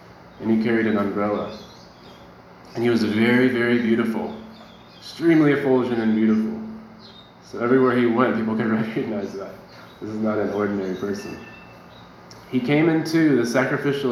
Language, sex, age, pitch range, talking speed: English, male, 20-39, 105-130 Hz, 145 wpm